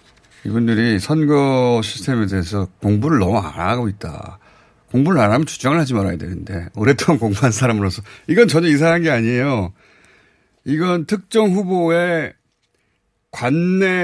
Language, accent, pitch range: Korean, native, 100-150 Hz